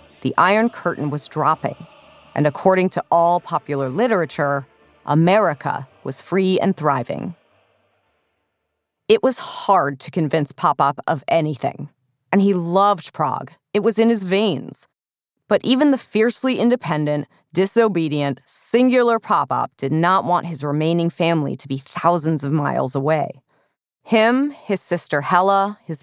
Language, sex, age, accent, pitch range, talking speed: English, female, 30-49, American, 145-195 Hz, 135 wpm